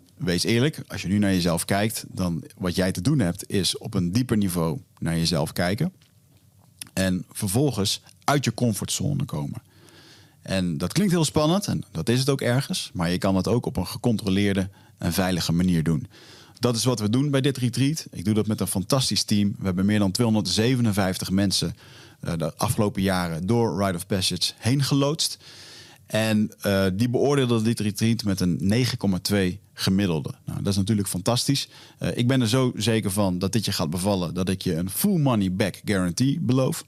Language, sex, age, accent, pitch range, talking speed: Dutch, male, 40-59, Dutch, 95-125 Hz, 190 wpm